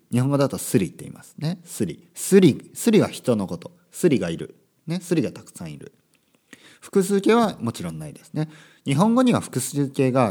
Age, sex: 40-59, male